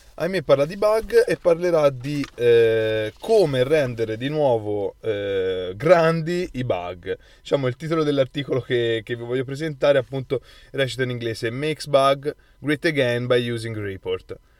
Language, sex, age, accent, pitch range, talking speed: Italian, male, 20-39, native, 110-155 Hz, 150 wpm